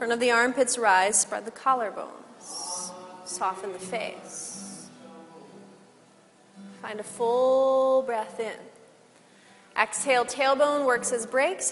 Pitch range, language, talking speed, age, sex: 205-260 Hz, English, 110 wpm, 30-49, female